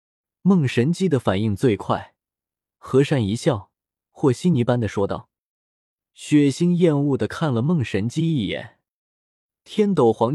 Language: Chinese